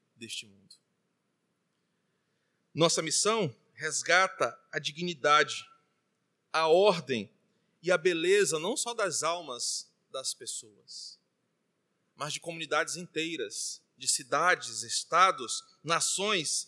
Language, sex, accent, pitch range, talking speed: Portuguese, male, Brazilian, 170-230 Hz, 95 wpm